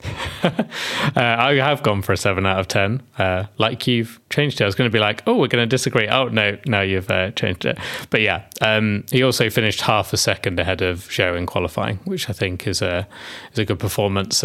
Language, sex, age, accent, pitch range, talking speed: English, male, 20-39, British, 95-115 Hz, 235 wpm